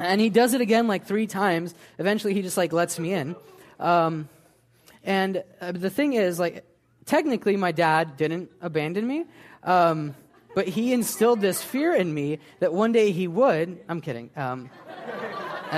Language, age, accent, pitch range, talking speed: English, 20-39, American, 135-185 Hz, 170 wpm